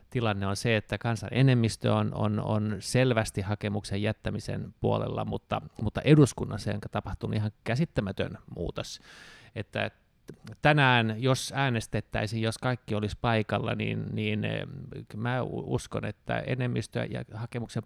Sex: male